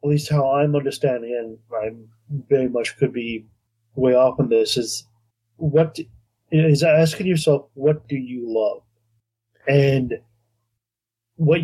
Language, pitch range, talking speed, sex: English, 115-150 Hz, 135 wpm, male